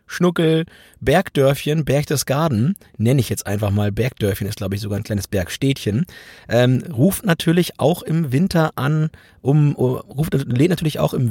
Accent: German